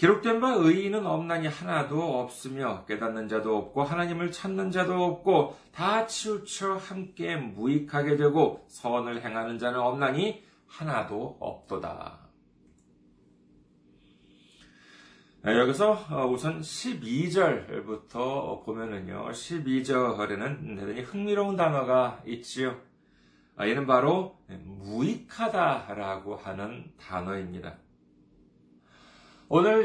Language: Korean